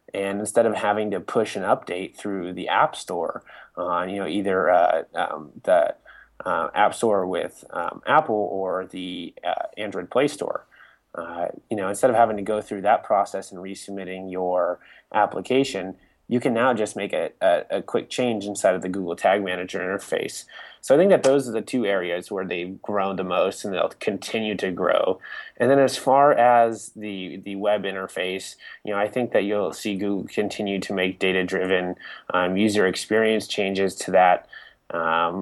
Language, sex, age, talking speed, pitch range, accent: English, male, 20-39, 180 wpm, 95-110 Hz, American